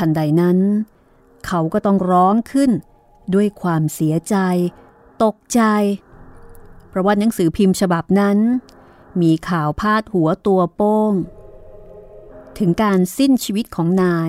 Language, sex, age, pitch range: Thai, female, 30-49, 160-200 Hz